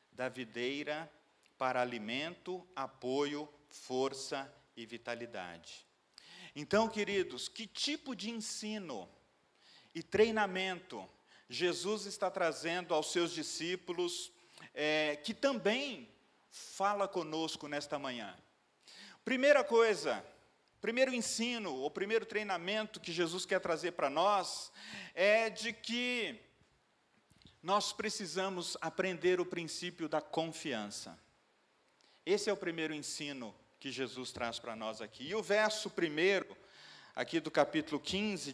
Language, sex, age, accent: Portuguese, male, 40-59, Brazilian